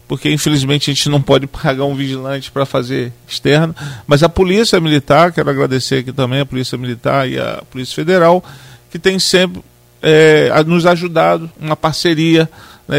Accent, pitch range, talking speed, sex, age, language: Brazilian, 135-160 Hz, 160 wpm, male, 40-59, Portuguese